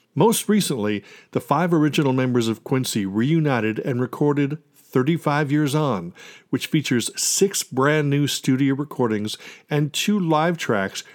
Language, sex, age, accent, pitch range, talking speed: English, male, 50-69, American, 110-155 Hz, 135 wpm